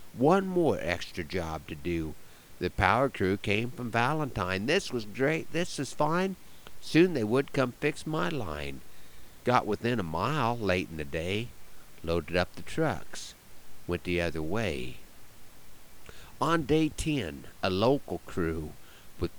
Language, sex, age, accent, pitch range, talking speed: English, male, 50-69, American, 85-135 Hz, 150 wpm